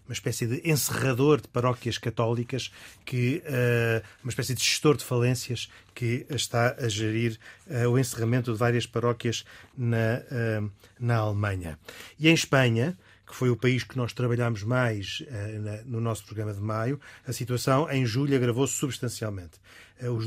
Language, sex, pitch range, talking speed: Portuguese, male, 110-125 Hz, 145 wpm